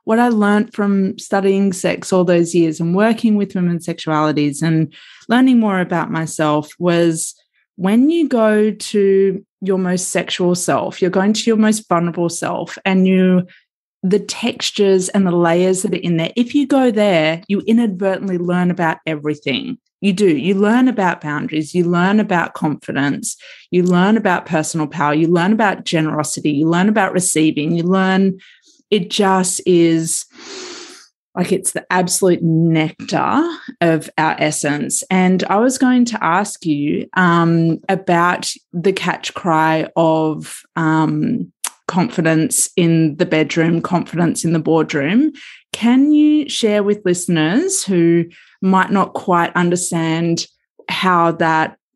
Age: 30-49